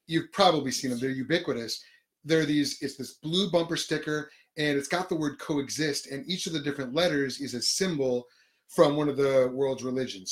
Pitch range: 130-165 Hz